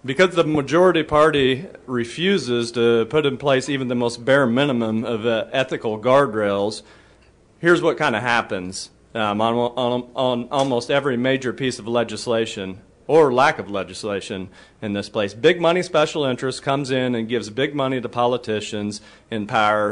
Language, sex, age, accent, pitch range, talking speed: English, male, 40-59, American, 115-145 Hz, 155 wpm